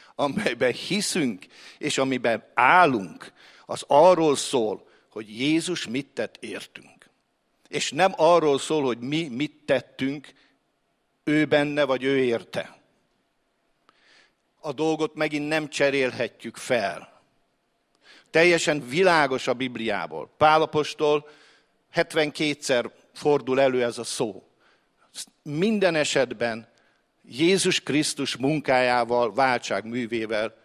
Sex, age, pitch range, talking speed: male, 50-69, 125-155 Hz, 95 wpm